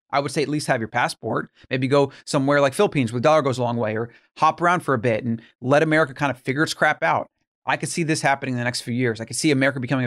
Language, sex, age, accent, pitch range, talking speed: English, male, 30-49, American, 125-160 Hz, 300 wpm